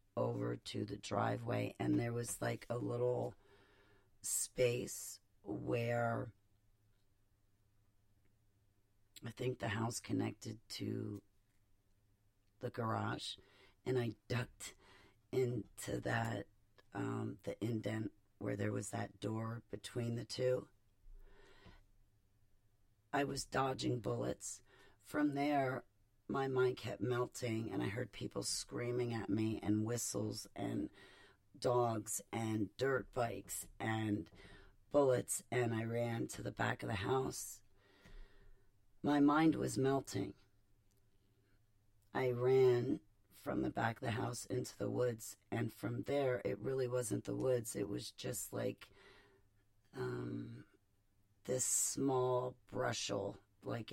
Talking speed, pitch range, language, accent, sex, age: 115 wpm, 100-120 Hz, English, American, female, 40-59